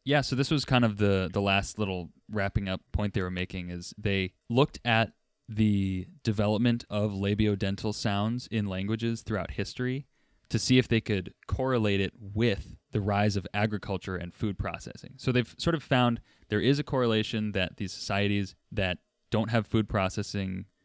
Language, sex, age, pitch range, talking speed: English, male, 20-39, 95-115 Hz, 175 wpm